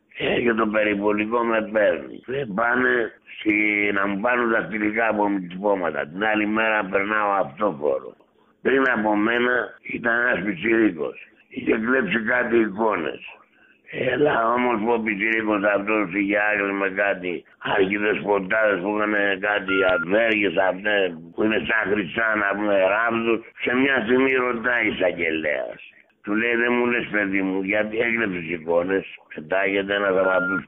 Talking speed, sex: 140 wpm, male